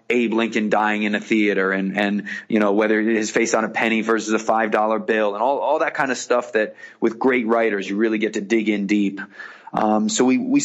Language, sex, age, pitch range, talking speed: English, male, 30-49, 110-130 Hz, 235 wpm